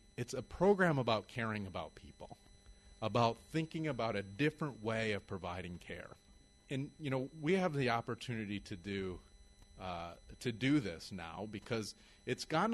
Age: 30-49